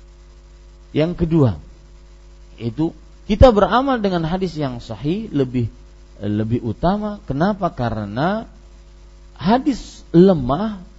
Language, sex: Malay, male